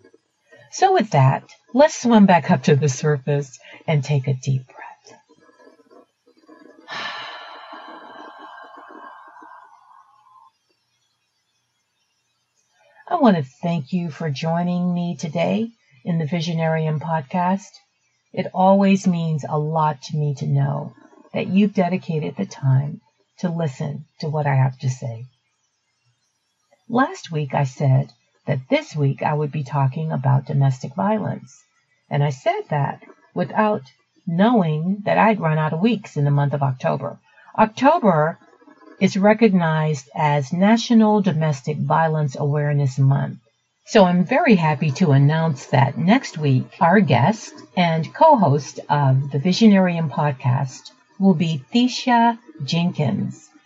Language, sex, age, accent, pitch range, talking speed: English, female, 50-69, American, 145-200 Hz, 125 wpm